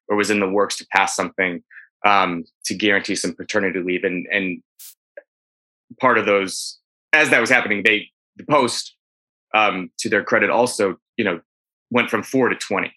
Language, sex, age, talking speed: English, male, 20-39, 175 wpm